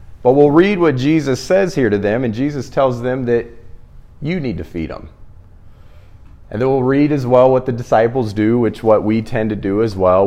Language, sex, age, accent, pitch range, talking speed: English, male, 40-59, American, 95-120 Hz, 215 wpm